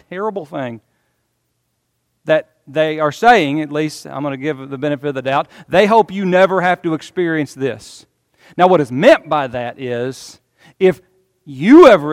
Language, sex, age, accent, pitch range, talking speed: English, male, 40-59, American, 140-190 Hz, 175 wpm